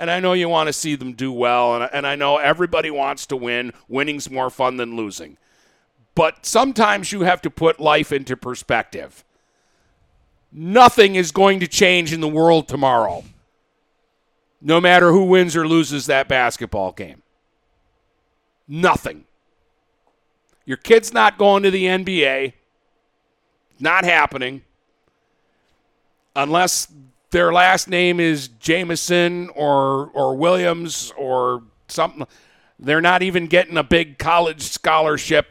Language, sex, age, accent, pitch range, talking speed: English, male, 50-69, American, 130-180 Hz, 130 wpm